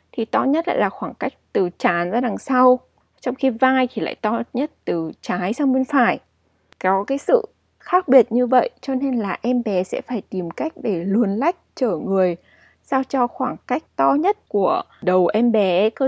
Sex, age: female, 20-39